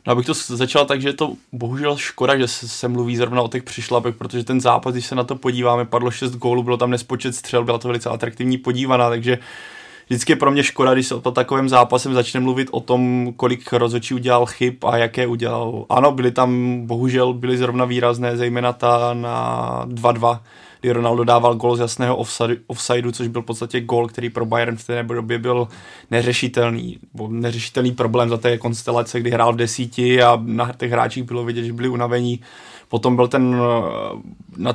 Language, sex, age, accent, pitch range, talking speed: Czech, male, 20-39, native, 120-125 Hz, 195 wpm